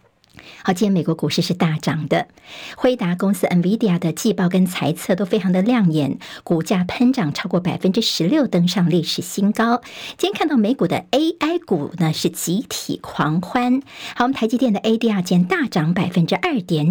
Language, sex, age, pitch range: Chinese, male, 50-69, 175-225 Hz